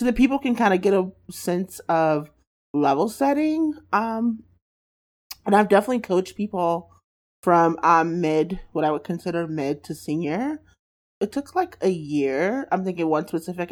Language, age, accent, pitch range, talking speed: English, 30-49, American, 155-200 Hz, 160 wpm